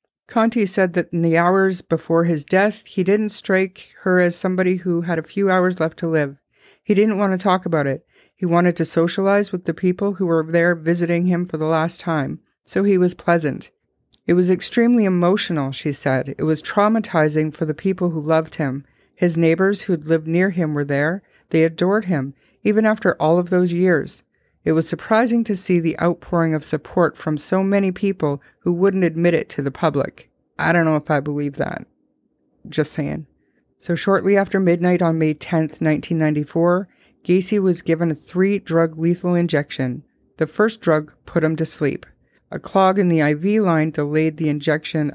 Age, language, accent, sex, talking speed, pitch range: 50-69, English, American, female, 190 wpm, 155-190 Hz